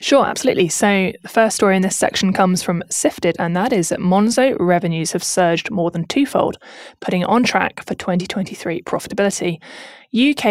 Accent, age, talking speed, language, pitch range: British, 20-39, 175 wpm, English, 170-215 Hz